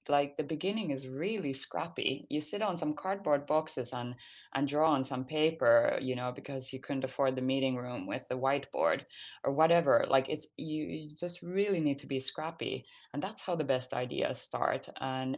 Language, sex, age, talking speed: English, female, 20-39, 195 wpm